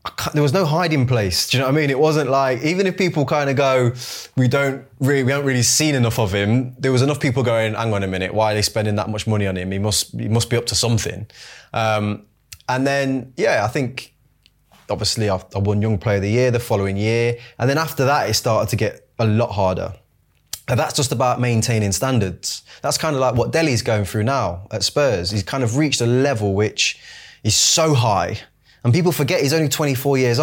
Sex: male